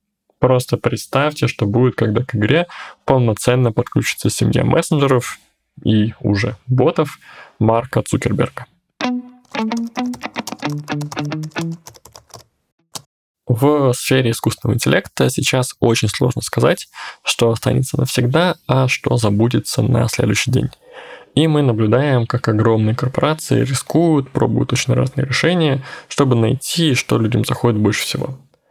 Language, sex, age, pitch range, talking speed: Russian, male, 20-39, 115-145 Hz, 105 wpm